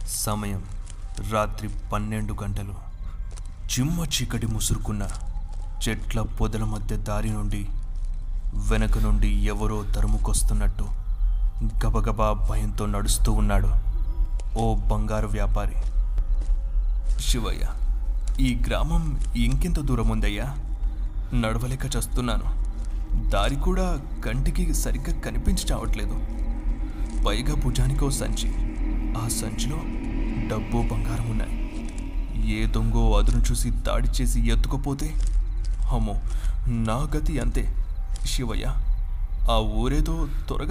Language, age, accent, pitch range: Telugu, 20-39, native, 95-115 Hz